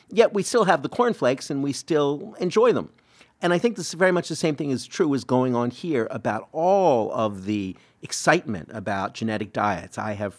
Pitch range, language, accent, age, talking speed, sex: 105-140 Hz, English, American, 50-69, 215 wpm, male